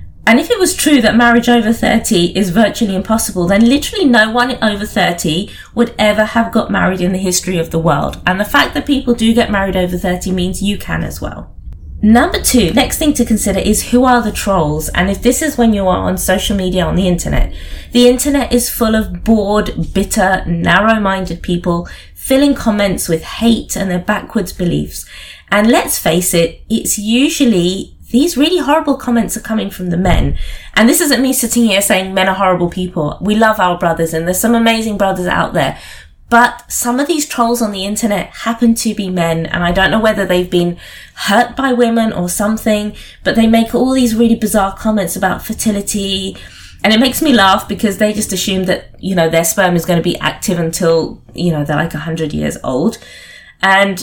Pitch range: 180-235 Hz